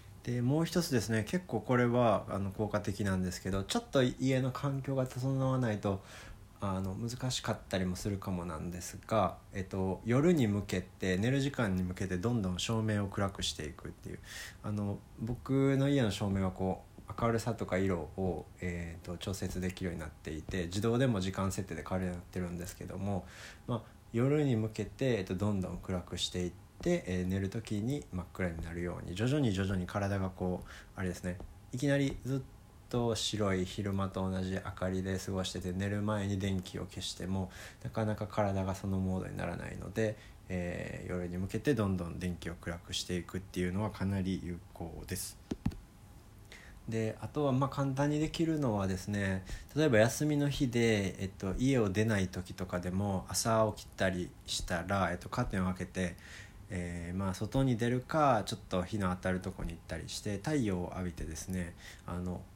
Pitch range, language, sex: 90-110 Hz, Japanese, male